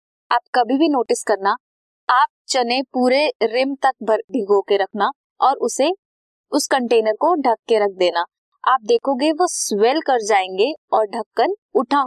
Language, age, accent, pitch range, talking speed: Hindi, 20-39, native, 205-290 Hz, 155 wpm